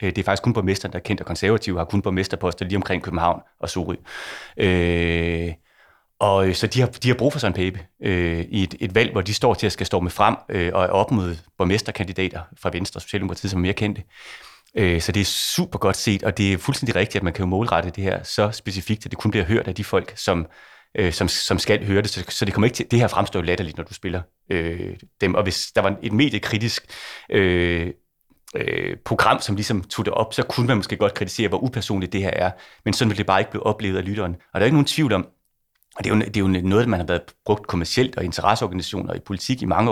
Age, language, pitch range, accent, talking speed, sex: 30-49, Danish, 90-110 Hz, native, 255 wpm, male